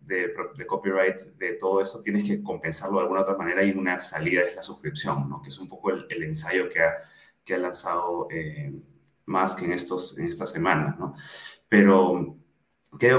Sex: male